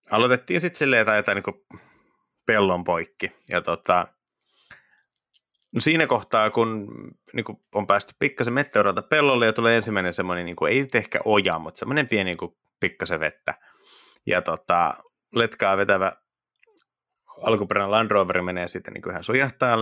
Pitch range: 95-130 Hz